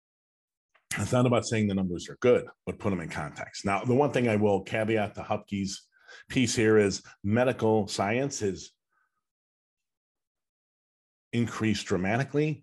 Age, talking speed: 40-59, 145 wpm